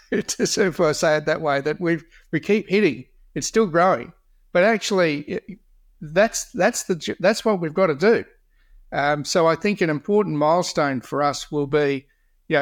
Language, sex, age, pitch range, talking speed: English, male, 60-79, 140-175 Hz, 180 wpm